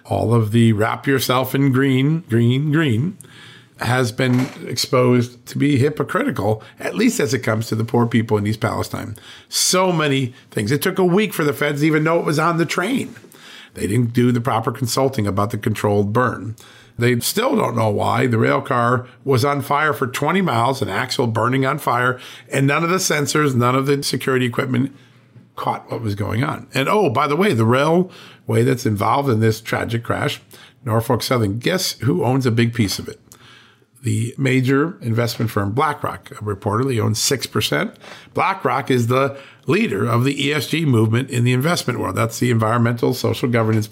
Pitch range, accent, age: 115-140 Hz, American, 50-69